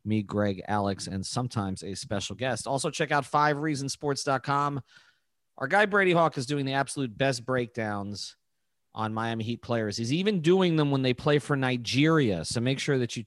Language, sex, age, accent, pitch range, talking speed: English, male, 30-49, American, 115-160 Hz, 180 wpm